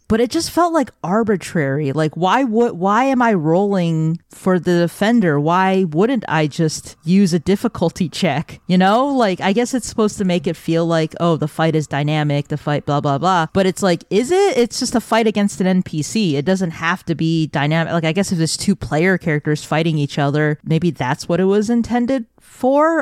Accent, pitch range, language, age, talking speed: American, 160-205 Hz, English, 30-49, 215 wpm